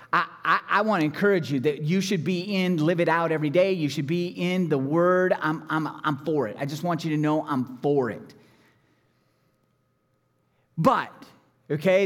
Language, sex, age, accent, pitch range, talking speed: English, male, 30-49, American, 155-210 Hz, 190 wpm